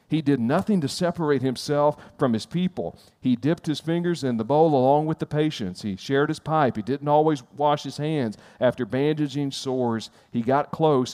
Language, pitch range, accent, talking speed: English, 115-145 Hz, American, 195 wpm